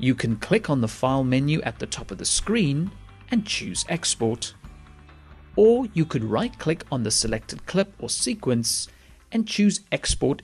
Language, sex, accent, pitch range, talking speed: English, male, British, 115-185 Hz, 170 wpm